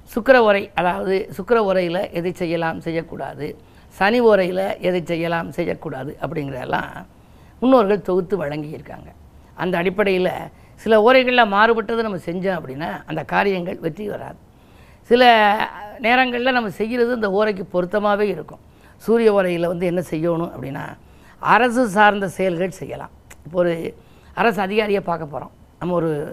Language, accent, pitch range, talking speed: Tamil, native, 175-220 Hz, 125 wpm